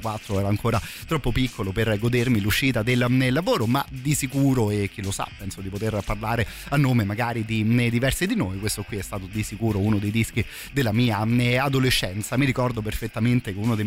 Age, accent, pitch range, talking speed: 30-49, native, 105-135 Hz, 195 wpm